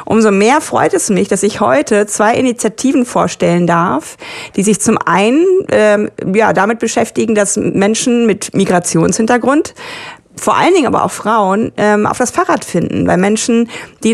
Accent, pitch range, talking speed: German, 200-250 Hz, 160 wpm